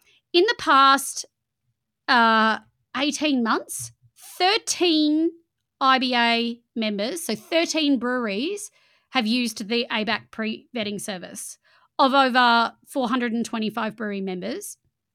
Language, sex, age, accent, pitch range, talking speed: English, female, 30-49, Australian, 225-300 Hz, 90 wpm